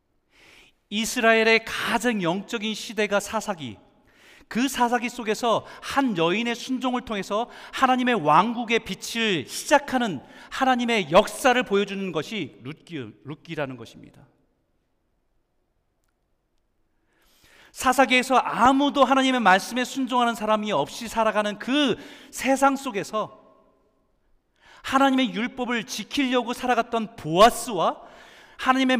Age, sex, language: 40-59, male, Korean